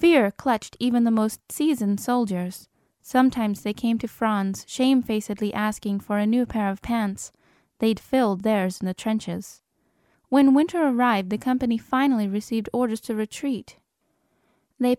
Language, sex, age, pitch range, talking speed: English, female, 10-29, 215-260 Hz, 150 wpm